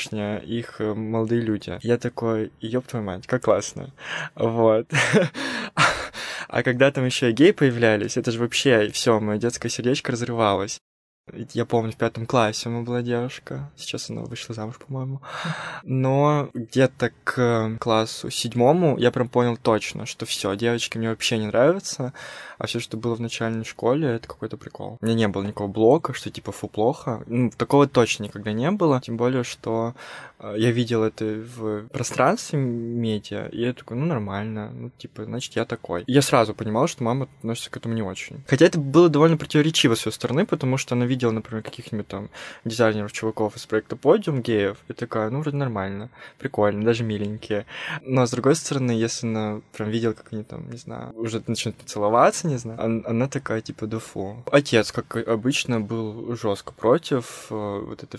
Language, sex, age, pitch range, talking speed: Russian, male, 20-39, 110-130 Hz, 180 wpm